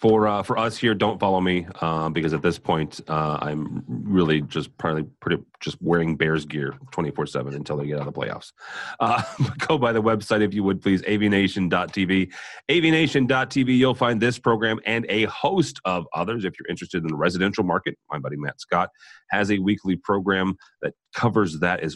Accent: American